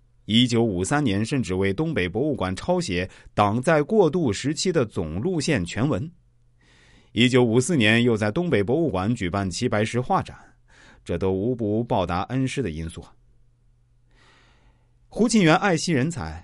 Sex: male